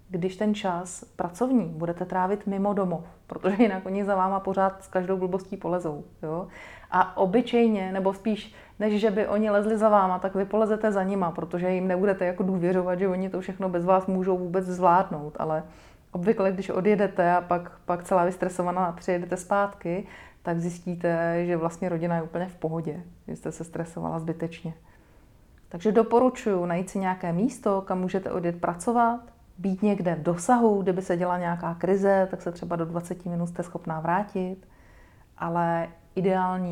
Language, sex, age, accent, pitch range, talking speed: Czech, female, 30-49, native, 170-195 Hz, 170 wpm